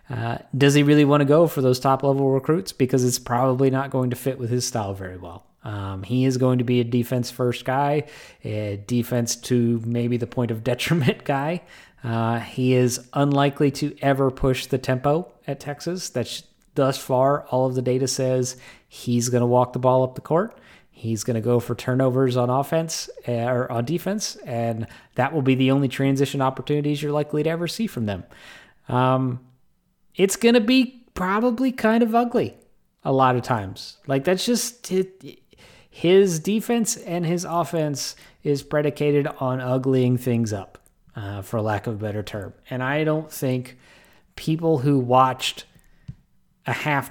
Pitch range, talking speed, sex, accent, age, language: 120-145 Hz, 180 wpm, male, American, 30-49, English